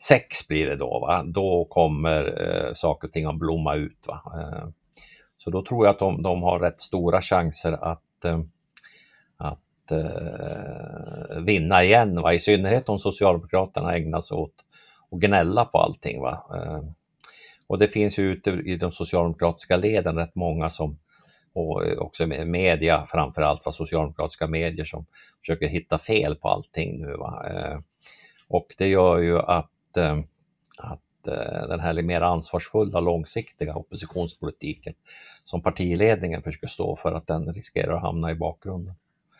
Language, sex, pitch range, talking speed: Swedish, male, 80-105 Hz, 150 wpm